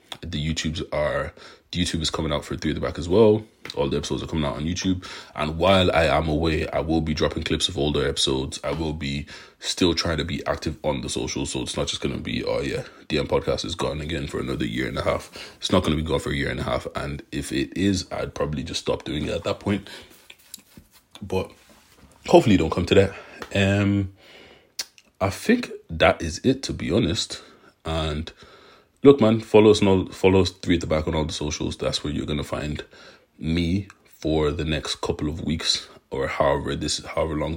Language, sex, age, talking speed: English, male, 30-49, 220 wpm